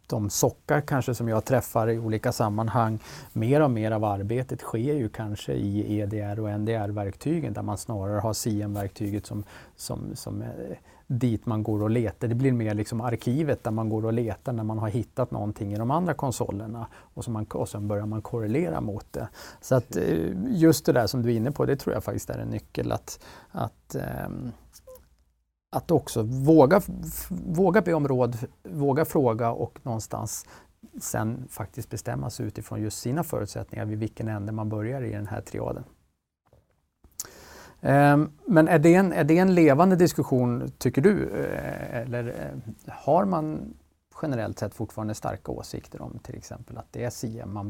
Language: Swedish